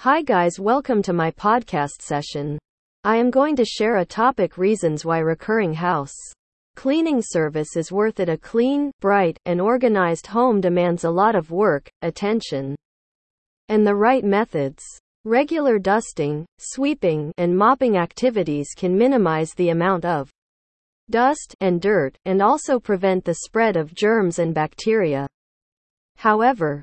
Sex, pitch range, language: female, 165-235 Hz, English